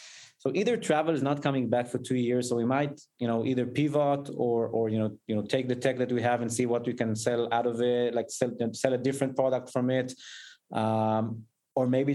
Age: 20-39